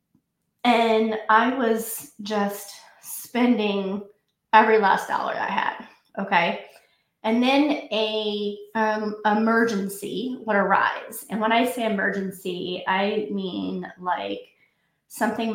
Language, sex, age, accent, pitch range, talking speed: English, female, 20-39, American, 195-225 Hz, 105 wpm